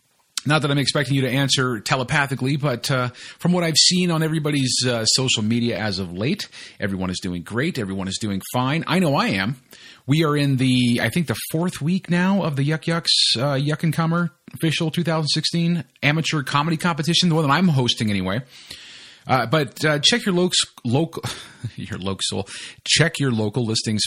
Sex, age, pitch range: male, 30-49, 105-150 Hz